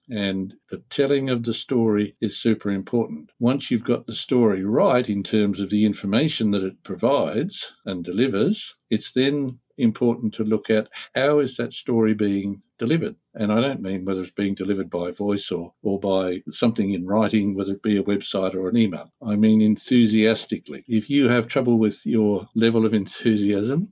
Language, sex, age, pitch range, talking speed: English, male, 60-79, 105-125 Hz, 185 wpm